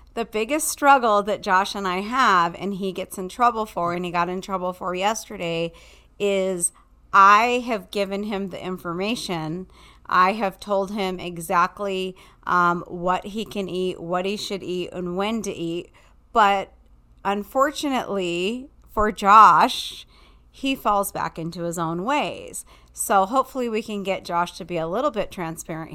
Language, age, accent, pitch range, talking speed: English, 40-59, American, 175-215 Hz, 160 wpm